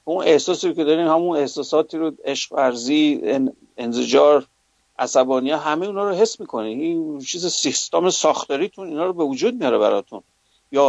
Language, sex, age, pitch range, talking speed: English, male, 50-69, 135-190 Hz, 145 wpm